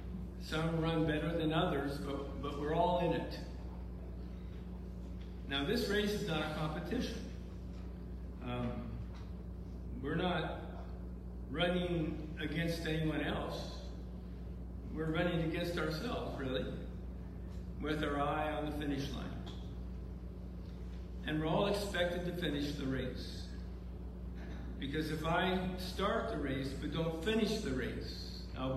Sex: male